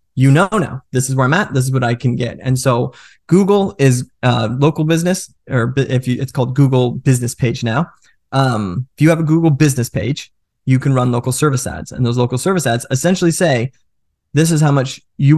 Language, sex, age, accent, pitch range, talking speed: English, male, 20-39, American, 125-150 Hz, 215 wpm